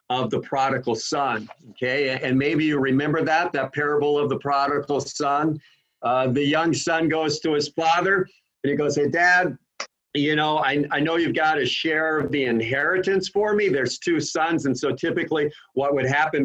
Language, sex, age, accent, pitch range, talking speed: English, male, 50-69, American, 130-170 Hz, 190 wpm